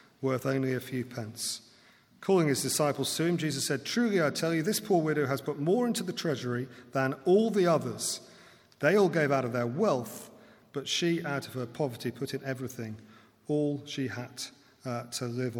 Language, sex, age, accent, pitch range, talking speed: English, male, 40-59, British, 125-170 Hz, 195 wpm